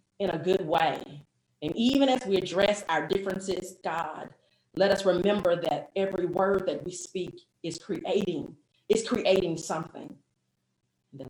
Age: 30-49